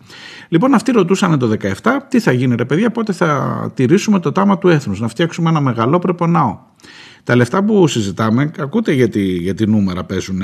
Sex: male